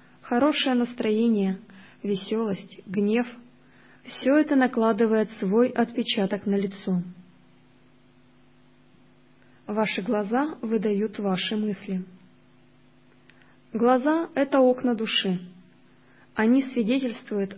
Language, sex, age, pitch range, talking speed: Russian, female, 20-39, 200-240 Hz, 75 wpm